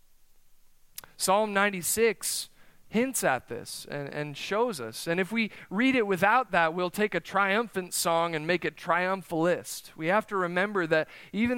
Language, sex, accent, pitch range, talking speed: English, male, American, 150-195 Hz, 160 wpm